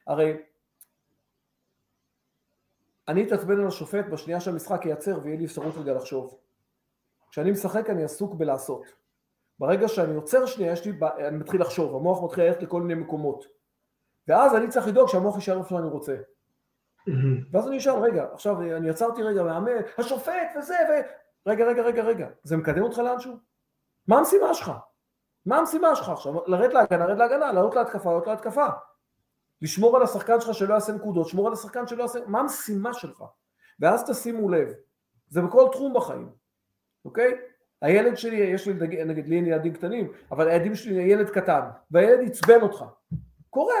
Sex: male